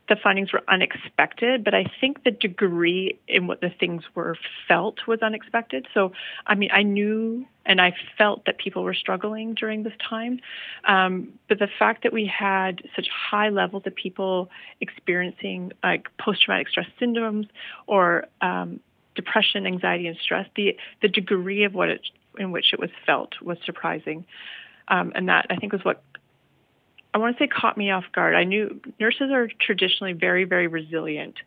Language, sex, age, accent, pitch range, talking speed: English, female, 30-49, American, 185-225 Hz, 170 wpm